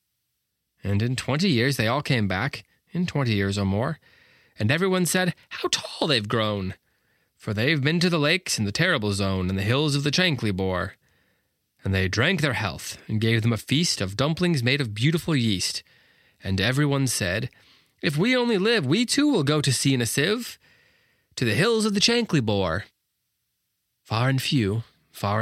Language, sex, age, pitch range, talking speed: English, male, 30-49, 95-135 Hz, 190 wpm